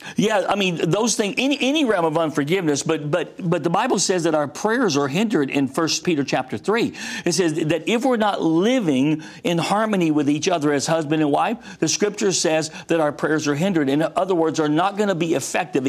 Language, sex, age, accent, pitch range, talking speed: English, male, 50-69, American, 155-210 Hz, 225 wpm